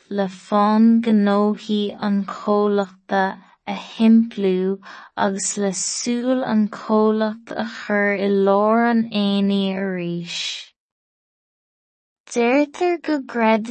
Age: 20-39